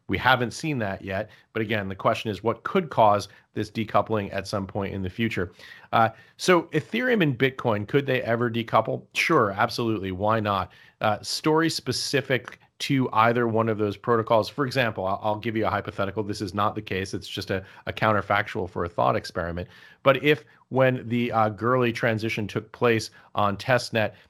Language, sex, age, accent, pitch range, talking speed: English, male, 40-59, American, 100-120 Hz, 190 wpm